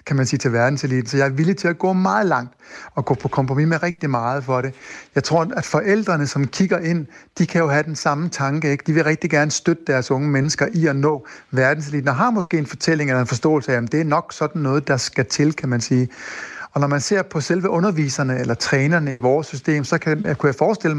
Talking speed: 255 wpm